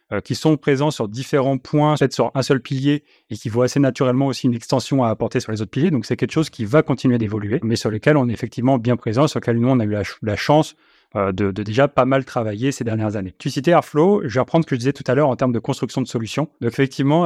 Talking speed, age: 280 wpm, 30-49